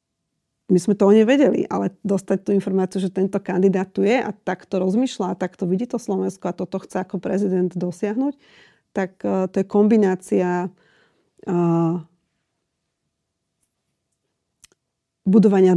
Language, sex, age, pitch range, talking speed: Slovak, female, 40-59, 180-200 Hz, 135 wpm